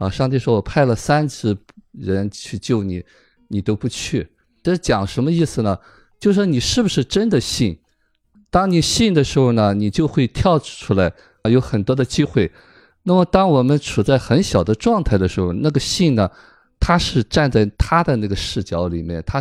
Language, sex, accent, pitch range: Chinese, male, native, 95-130 Hz